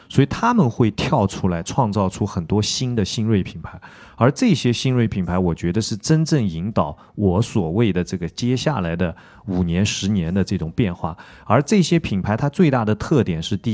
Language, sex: Chinese, male